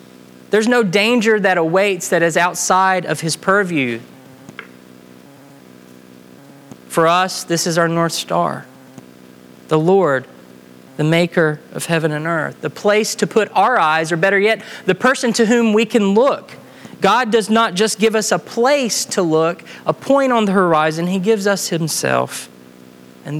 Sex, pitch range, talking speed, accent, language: male, 125-185 Hz, 160 wpm, American, English